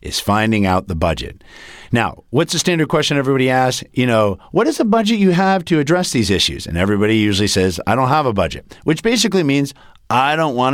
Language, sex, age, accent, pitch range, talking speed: English, male, 50-69, American, 95-135 Hz, 220 wpm